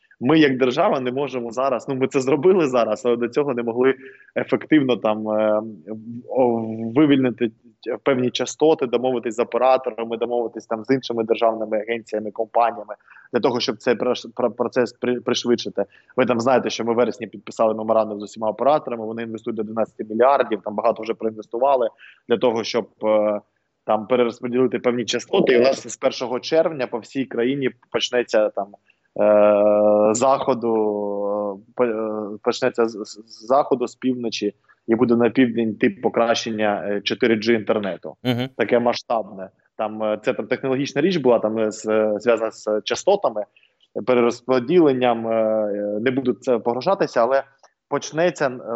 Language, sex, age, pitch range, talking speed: Ukrainian, male, 20-39, 110-130 Hz, 130 wpm